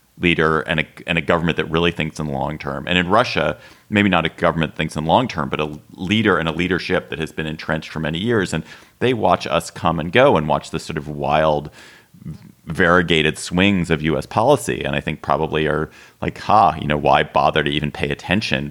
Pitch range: 75-90 Hz